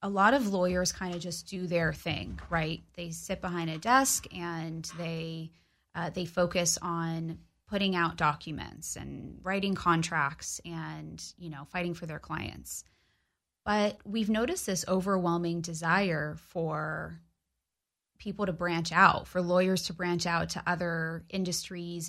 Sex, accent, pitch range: female, American, 165-195 Hz